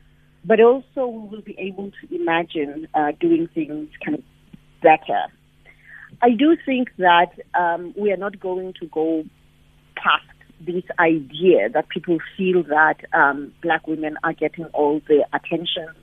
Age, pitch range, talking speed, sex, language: 40-59, 155-215 Hz, 150 wpm, female, English